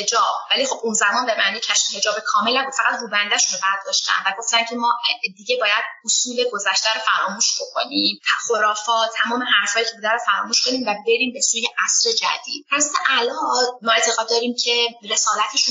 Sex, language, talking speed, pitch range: female, Persian, 185 wpm, 200-245 Hz